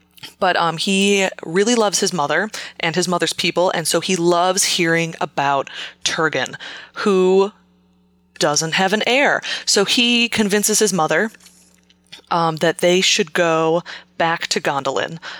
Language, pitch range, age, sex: English, 160-195 Hz, 20-39, female